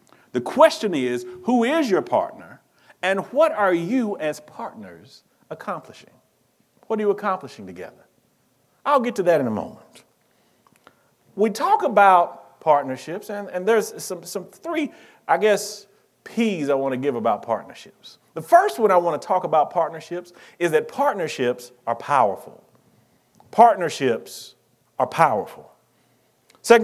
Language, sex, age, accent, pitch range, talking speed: English, male, 40-59, American, 170-225 Hz, 140 wpm